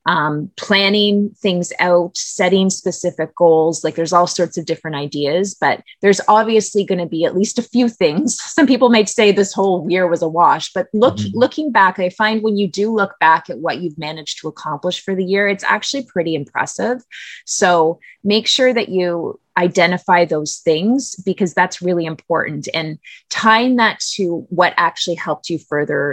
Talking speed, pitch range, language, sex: 185 wpm, 160-210 Hz, English, female